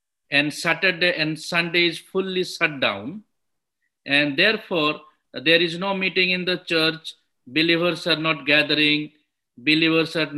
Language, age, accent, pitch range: English, 50-69, Indian, 150-180 Hz